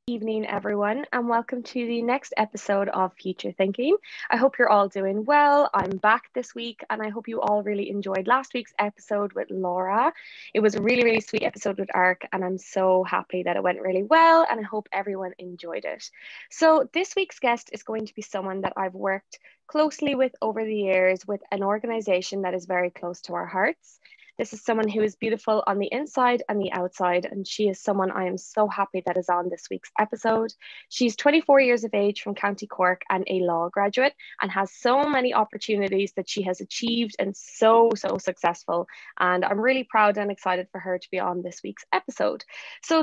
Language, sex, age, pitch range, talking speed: English, female, 20-39, 190-245 Hz, 210 wpm